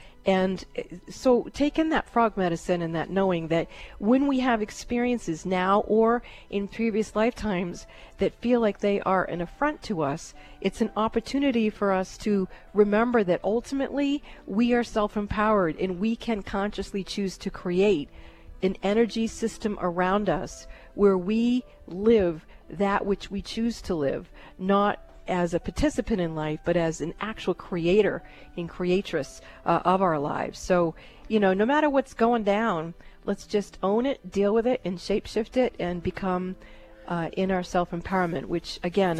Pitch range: 180-220 Hz